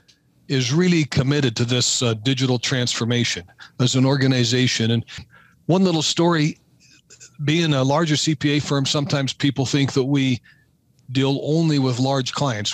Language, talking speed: English, 140 wpm